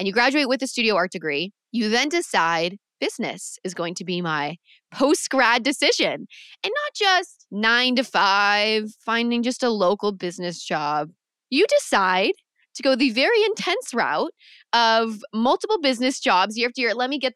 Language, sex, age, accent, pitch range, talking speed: English, female, 20-39, American, 190-265 Hz, 170 wpm